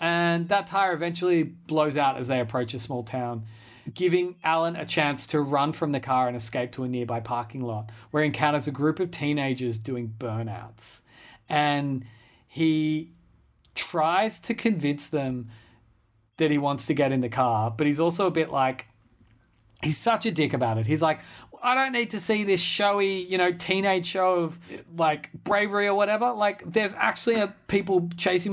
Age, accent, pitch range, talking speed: 30-49, Australian, 125-170 Hz, 180 wpm